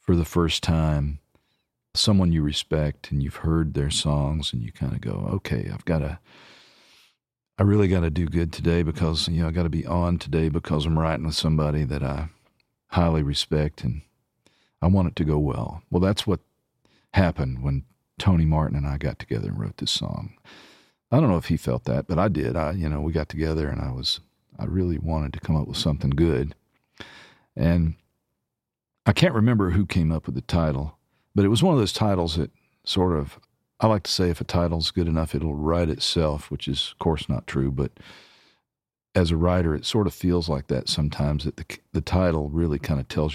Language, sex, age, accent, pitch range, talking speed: English, male, 50-69, American, 75-85 Hz, 210 wpm